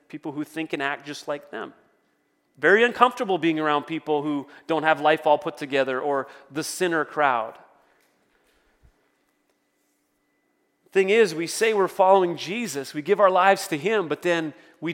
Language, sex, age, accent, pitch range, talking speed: English, male, 30-49, American, 155-205 Hz, 160 wpm